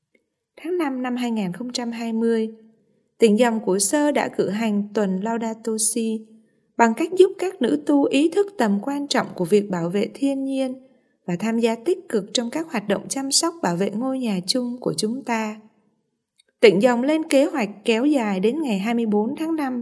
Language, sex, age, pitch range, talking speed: Vietnamese, female, 20-39, 205-275 Hz, 190 wpm